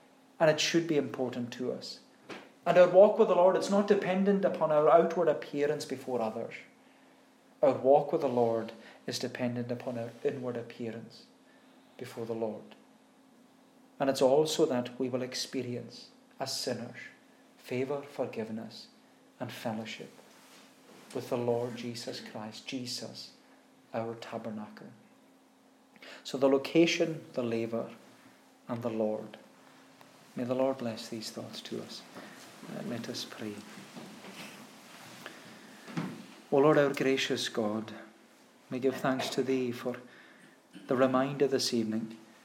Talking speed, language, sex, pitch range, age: 130 wpm, English, male, 115-145 Hz, 40-59